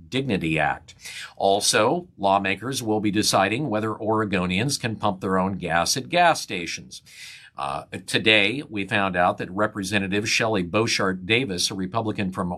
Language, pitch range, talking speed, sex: English, 100-130 Hz, 145 wpm, male